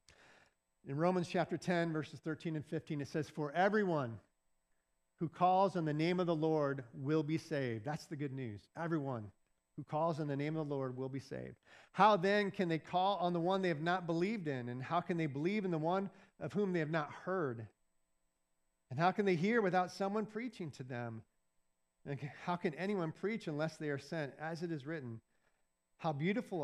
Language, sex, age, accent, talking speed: English, male, 40-59, American, 205 wpm